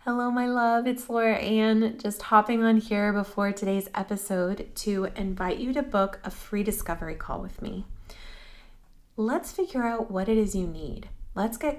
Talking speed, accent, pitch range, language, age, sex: 175 wpm, American, 190-220 Hz, English, 30-49, female